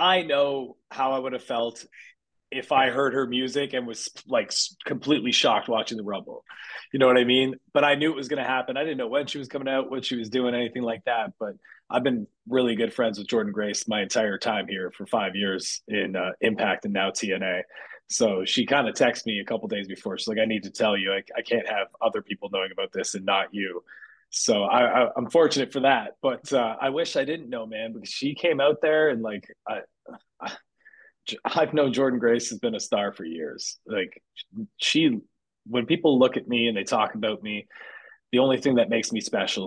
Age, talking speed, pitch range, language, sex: 20-39, 230 wpm, 110-140 Hz, English, male